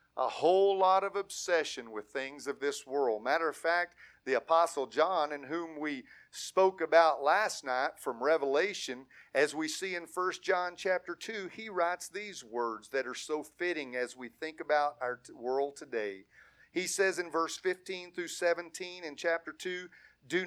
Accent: American